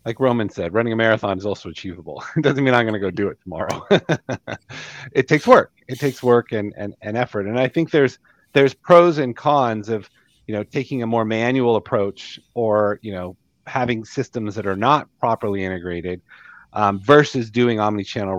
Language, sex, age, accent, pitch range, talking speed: English, male, 30-49, American, 100-135 Hz, 195 wpm